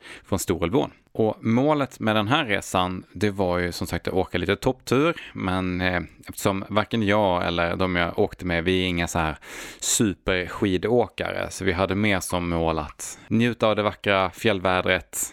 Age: 20-39